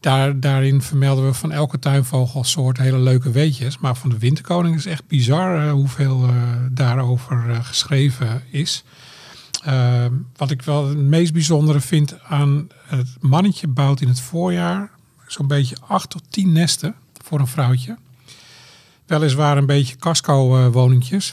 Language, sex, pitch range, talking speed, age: Dutch, male, 130-150 Hz, 150 wpm, 50-69